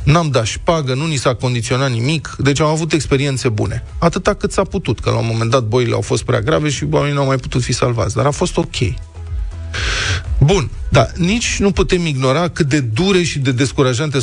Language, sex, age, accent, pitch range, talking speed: Romanian, male, 30-49, native, 120-160 Hz, 215 wpm